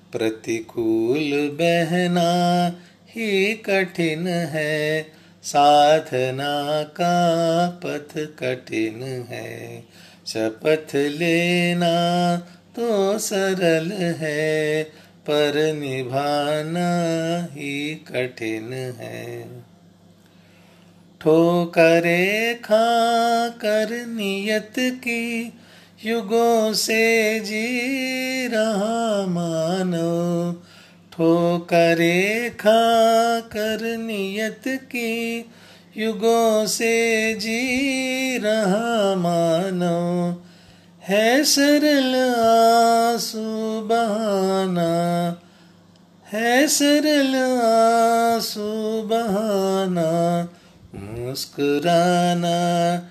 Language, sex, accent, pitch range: Telugu, male, native, 165-225 Hz